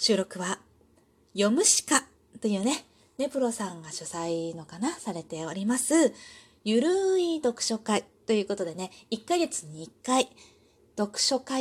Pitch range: 195-290 Hz